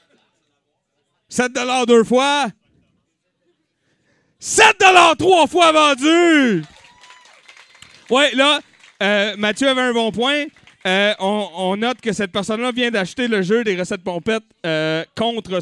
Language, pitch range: French, 165-260 Hz